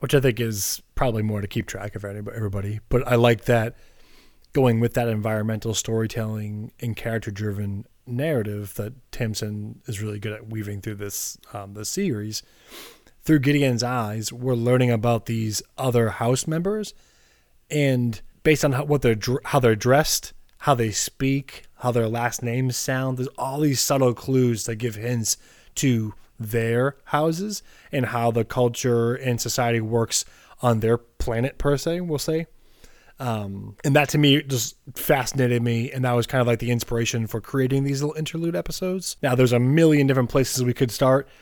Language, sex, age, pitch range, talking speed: English, male, 20-39, 110-135 Hz, 170 wpm